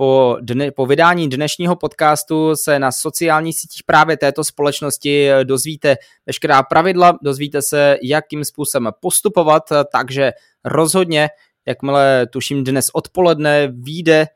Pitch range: 135-155 Hz